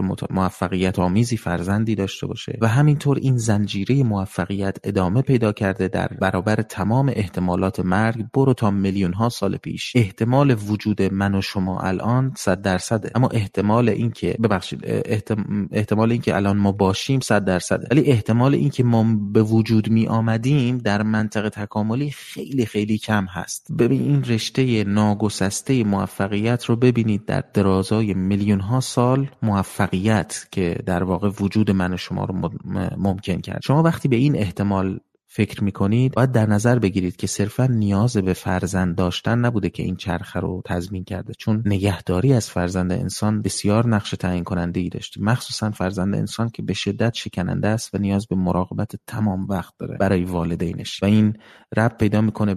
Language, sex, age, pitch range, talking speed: Persian, male, 30-49, 95-110 Hz, 160 wpm